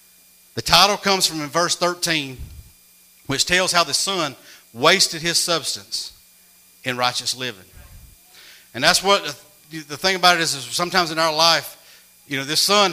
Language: English